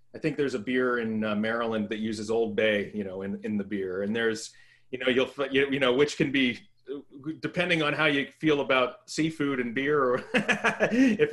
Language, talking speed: English, 210 wpm